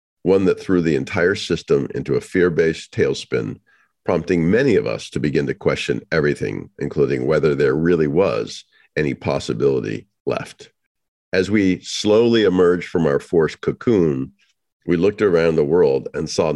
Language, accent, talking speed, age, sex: English, American, 150 wpm, 50-69, male